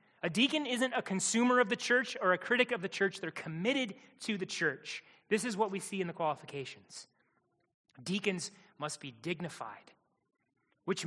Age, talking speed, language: 30-49, 175 wpm, English